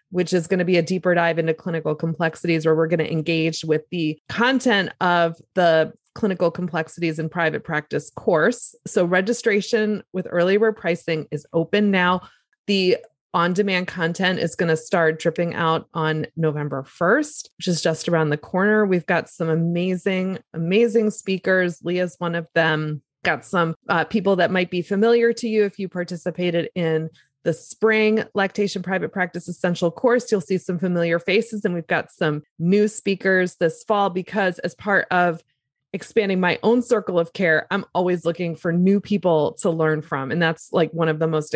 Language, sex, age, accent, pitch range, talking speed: English, female, 20-39, American, 160-195 Hz, 180 wpm